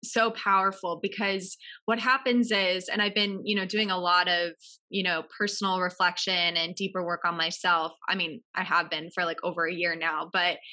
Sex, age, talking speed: female, 20-39, 200 wpm